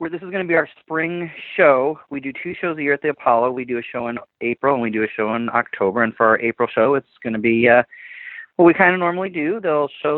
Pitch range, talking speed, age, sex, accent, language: 100-125 Hz, 285 wpm, 30-49, male, American, English